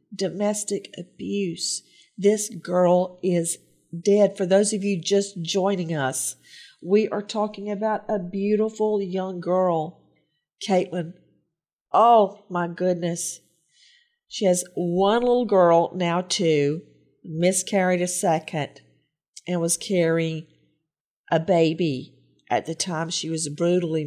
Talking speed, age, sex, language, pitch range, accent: 115 wpm, 50-69, female, English, 165-200 Hz, American